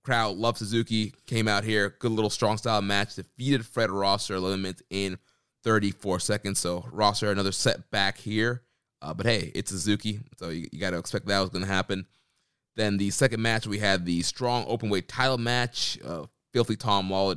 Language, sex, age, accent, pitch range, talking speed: English, male, 20-39, American, 95-115 Hz, 185 wpm